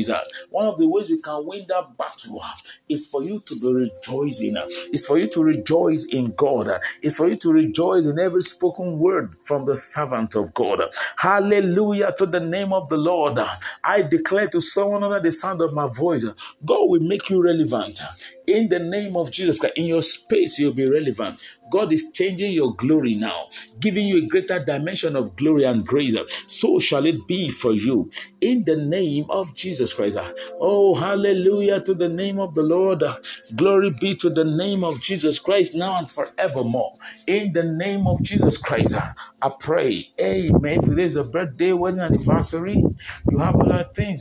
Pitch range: 150-195 Hz